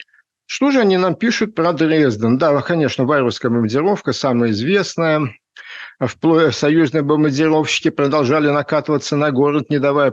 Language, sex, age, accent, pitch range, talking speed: Russian, male, 50-69, native, 120-150 Hz, 130 wpm